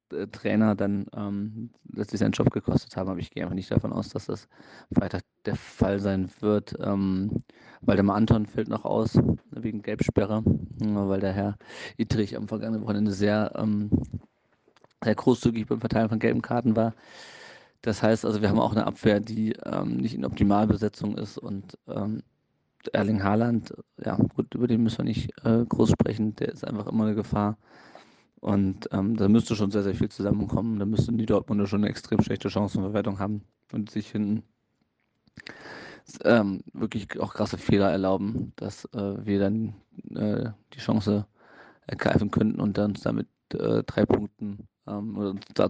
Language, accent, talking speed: German, German, 170 wpm